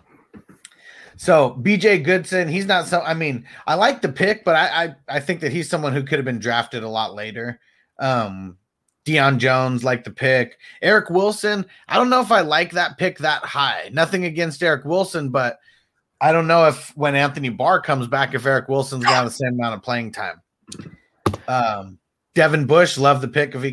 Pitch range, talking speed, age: 130-180 Hz, 195 wpm, 30-49